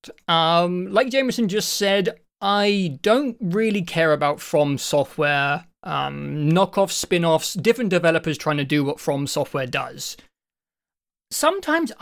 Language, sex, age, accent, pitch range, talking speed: English, male, 20-39, British, 150-205 Hz, 125 wpm